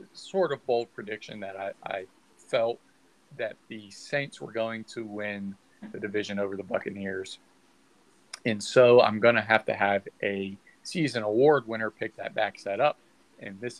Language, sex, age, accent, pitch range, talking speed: English, male, 40-59, American, 100-115 Hz, 170 wpm